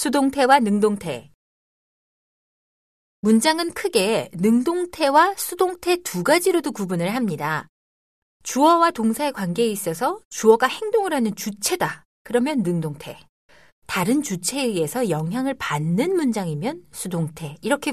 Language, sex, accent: Korean, female, native